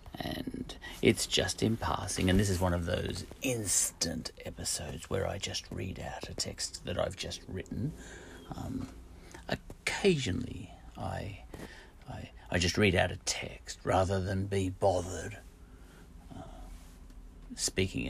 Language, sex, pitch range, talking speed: English, male, 85-105 Hz, 135 wpm